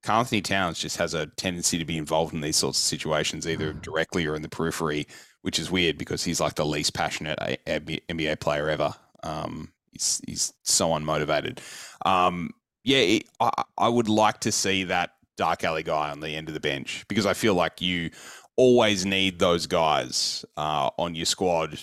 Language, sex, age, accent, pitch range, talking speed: English, male, 30-49, Australian, 80-100 Hz, 185 wpm